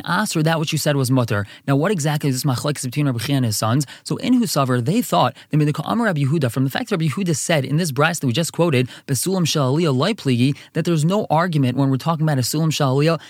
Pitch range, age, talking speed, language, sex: 145-185 Hz, 20-39, 210 wpm, English, male